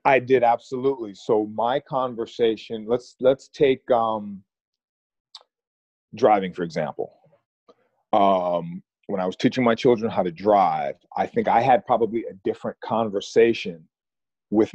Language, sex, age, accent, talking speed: English, male, 40-59, American, 130 wpm